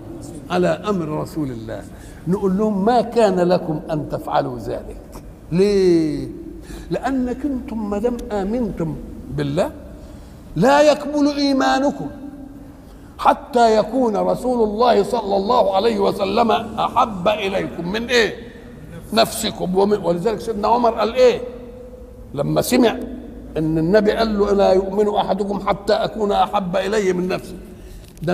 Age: 60-79